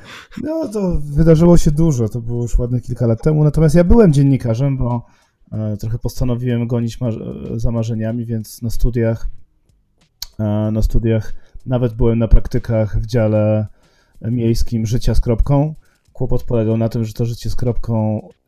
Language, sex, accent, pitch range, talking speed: Polish, male, native, 110-130 Hz, 155 wpm